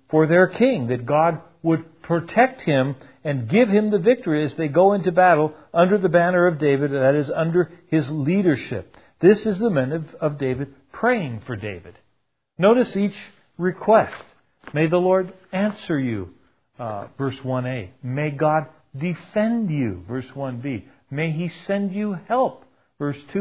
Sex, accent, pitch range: male, American, 135-195 Hz